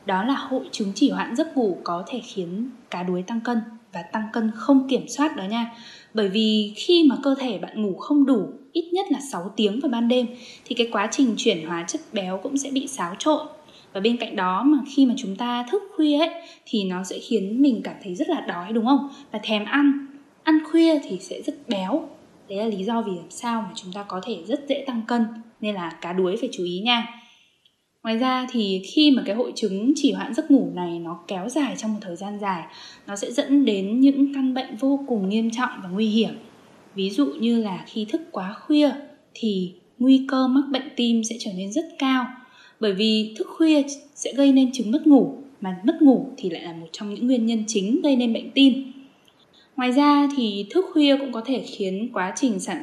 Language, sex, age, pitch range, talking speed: Vietnamese, female, 10-29, 215-280 Hz, 230 wpm